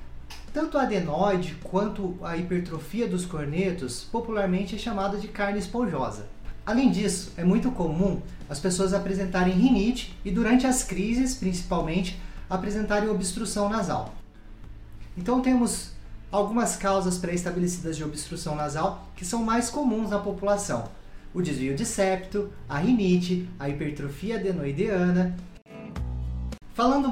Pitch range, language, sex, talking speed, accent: 160-205 Hz, Portuguese, male, 120 wpm, Brazilian